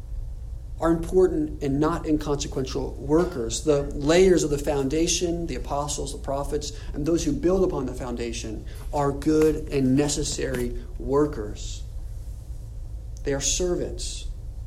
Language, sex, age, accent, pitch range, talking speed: English, male, 40-59, American, 125-160 Hz, 125 wpm